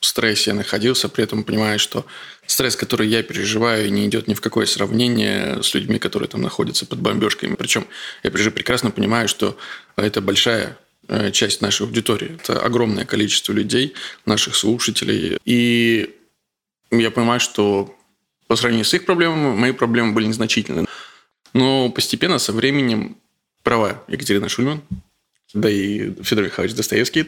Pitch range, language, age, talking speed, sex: 105-125 Hz, Russian, 20-39, 145 wpm, male